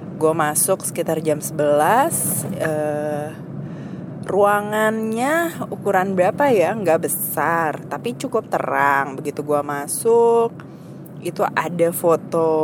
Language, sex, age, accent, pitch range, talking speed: Indonesian, female, 20-39, native, 155-185 Hz, 100 wpm